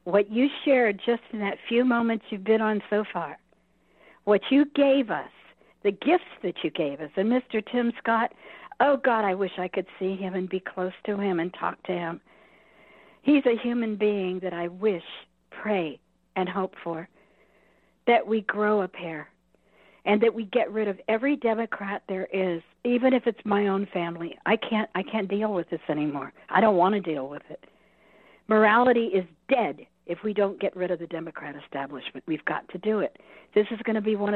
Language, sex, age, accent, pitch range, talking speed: English, female, 60-79, American, 185-225 Hz, 195 wpm